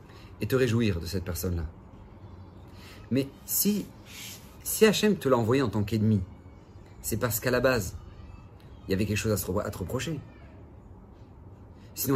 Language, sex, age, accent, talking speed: French, male, 40-59, French, 160 wpm